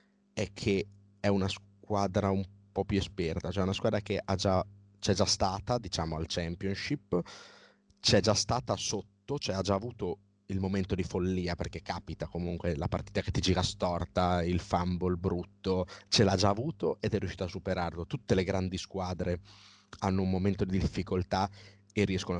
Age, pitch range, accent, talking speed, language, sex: 30-49, 90-105 Hz, native, 175 wpm, Italian, male